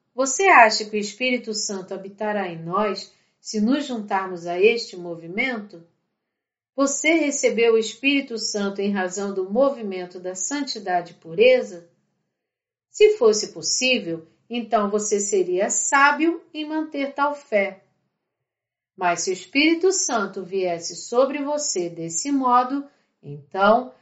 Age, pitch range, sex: 40-59, 195-270 Hz, female